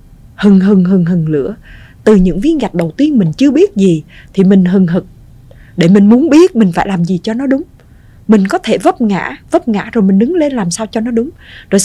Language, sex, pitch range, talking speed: Vietnamese, female, 170-235 Hz, 240 wpm